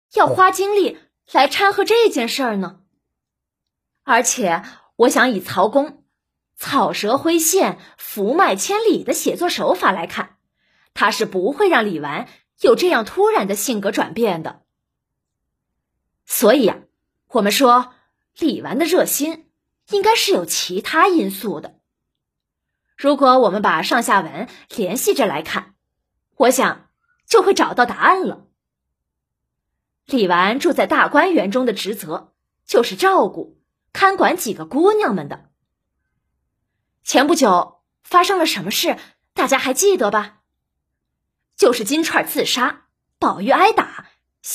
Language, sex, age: Chinese, female, 20-39